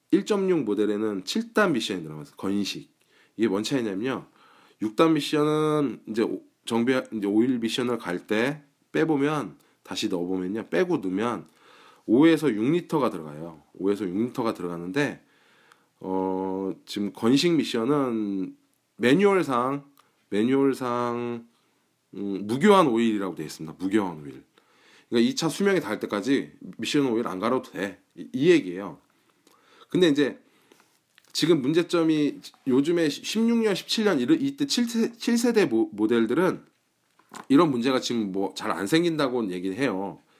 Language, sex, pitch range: Korean, male, 105-155 Hz